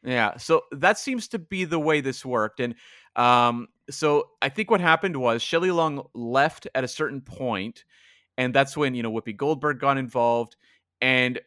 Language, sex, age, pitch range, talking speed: English, male, 30-49, 110-145 Hz, 185 wpm